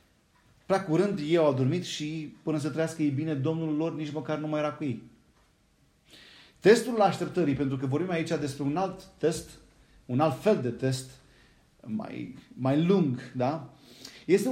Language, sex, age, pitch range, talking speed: Romanian, male, 30-49, 125-165 Hz, 165 wpm